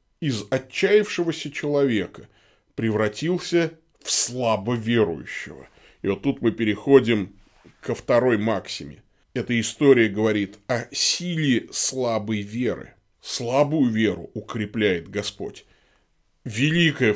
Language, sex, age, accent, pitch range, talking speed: Russian, male, 20-39, native, 100-140 Hz, 90 wpm